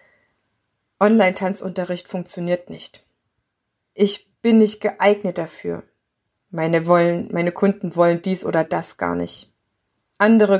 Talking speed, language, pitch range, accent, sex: 100 wpm, German, 175-210 Hz, German, female